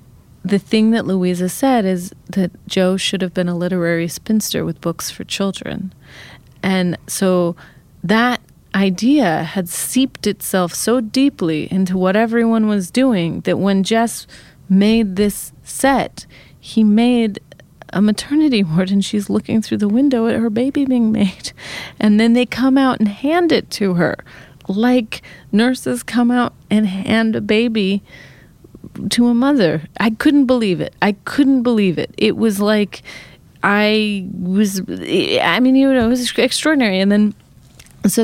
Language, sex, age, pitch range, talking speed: English, female, 30-49, 180-225 Hz, 155 wpm